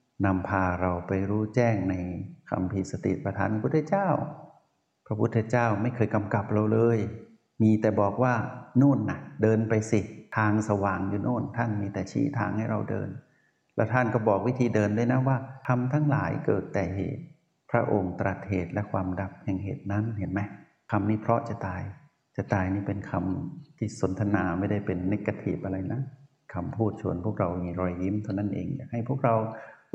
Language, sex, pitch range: Thai, male, 100-130 Hz